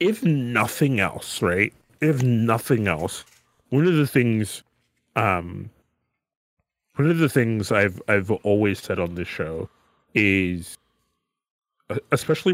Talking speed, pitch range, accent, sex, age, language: 120 wpm, 105-135 Hz, American, male, 30-49, English